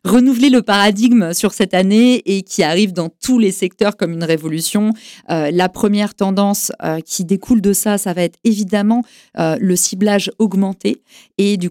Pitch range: 180-230 Hz